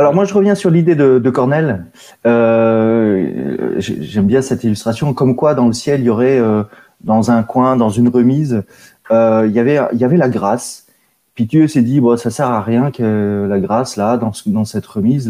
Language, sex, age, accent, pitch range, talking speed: French, male, 20-39, French, 115-150 Hz, 225 wpm